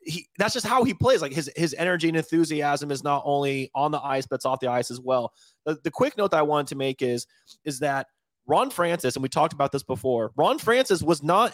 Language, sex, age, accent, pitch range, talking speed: English, male, 30-49, American, 140-175 Hz, 250 wpm